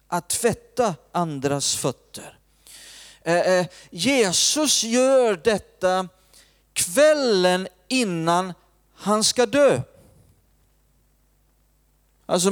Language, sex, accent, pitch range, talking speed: Swedish, male, native, 140-215 Hz, 60 wpm